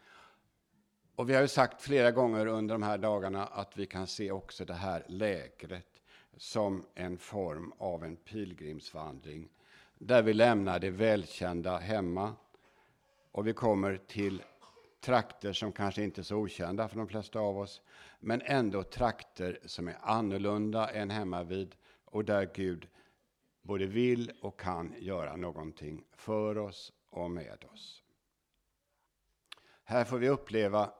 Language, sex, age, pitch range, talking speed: Swedish, male, 60-79, 90-110 Hz, 145 wpm